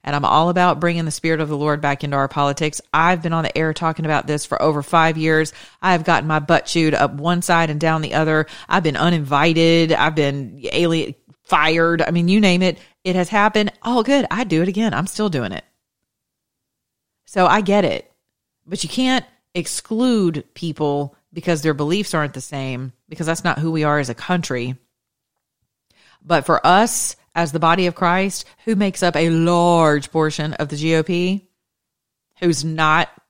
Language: English